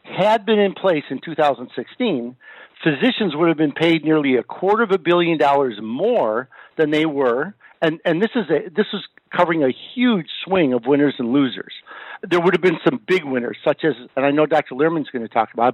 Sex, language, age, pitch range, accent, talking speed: male, English, 50-69, 135-175 Hz, American, 210 wpm